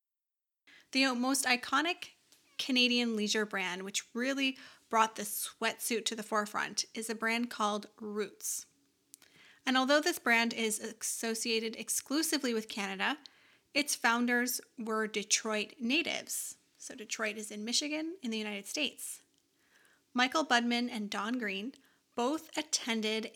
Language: English